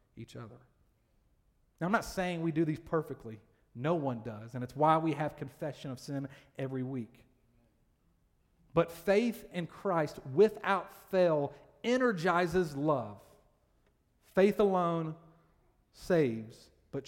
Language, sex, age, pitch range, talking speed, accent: English, male, 40-59, 125-180 Hz, 125 wpm, American